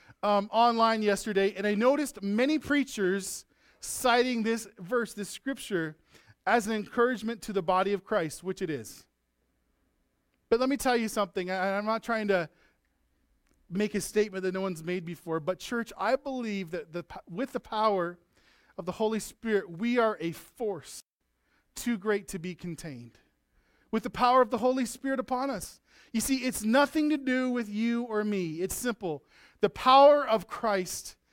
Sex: male